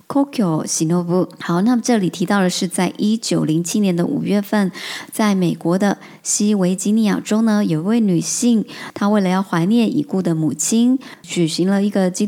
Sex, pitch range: male, 180-220 Hz